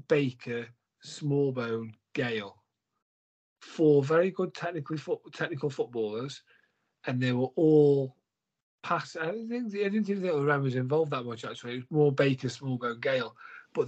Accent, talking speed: British, 120 wpm